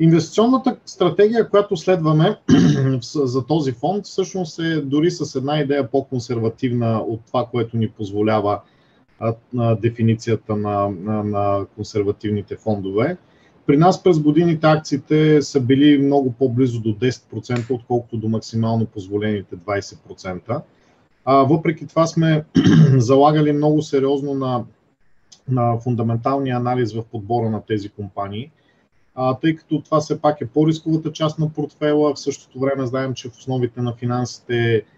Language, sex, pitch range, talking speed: Bulgarian, male, 115-145 Hz, 130 wpm